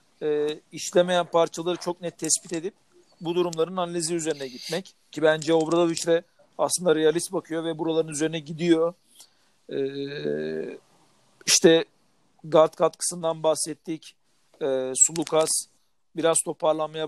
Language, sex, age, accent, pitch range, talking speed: Turkish, male, 50-69, native, 150-175 Hz, 105 wpm